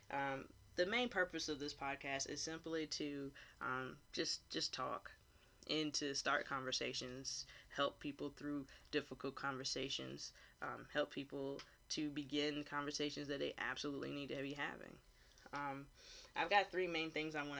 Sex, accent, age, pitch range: female, American, 10-29, 130-155 Hz